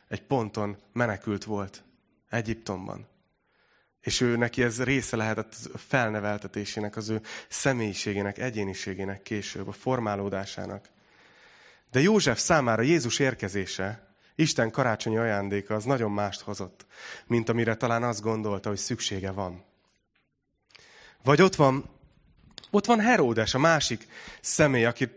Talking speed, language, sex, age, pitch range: 115 wpm, Hungarian, male, 30-49, 110-135 Hz